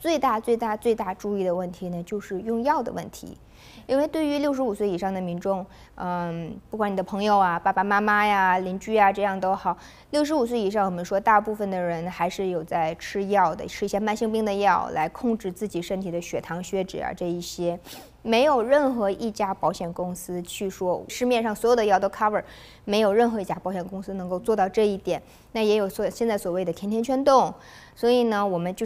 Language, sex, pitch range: Chinese, female, 190-240 Hz